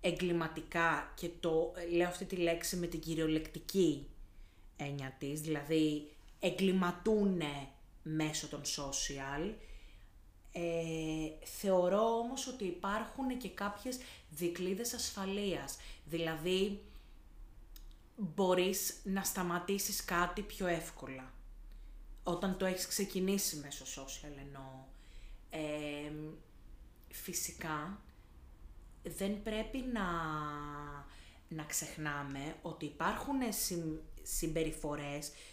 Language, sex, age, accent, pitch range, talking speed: Greek, female, 30-49, native, 150-195 Hz, 85 wpm